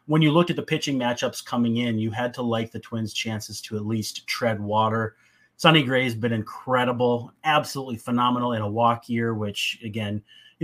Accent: American